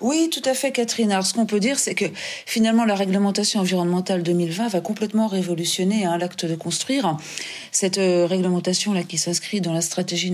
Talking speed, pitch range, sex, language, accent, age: 190 wpm, 170-225 Hz, female, French, French, 40-59